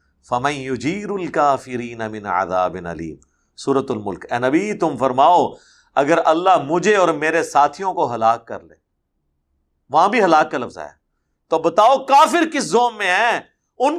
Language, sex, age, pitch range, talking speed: Urdu, male, 50-69, 105-175 Hz, 135 wpm